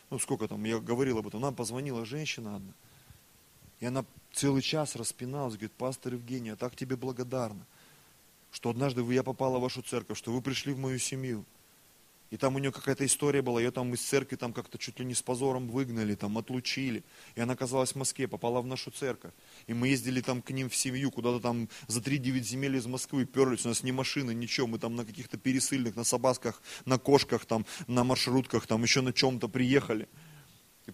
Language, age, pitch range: Russian, 20-39, 120-140 Hz